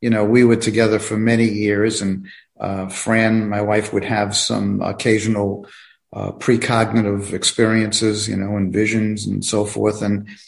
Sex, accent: male, American